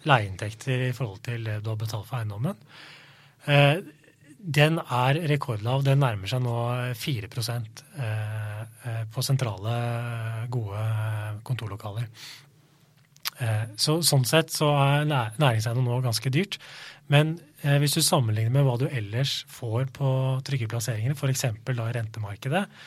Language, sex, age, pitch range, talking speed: English, male, 30-49, 120-150 Hz, 120 wpm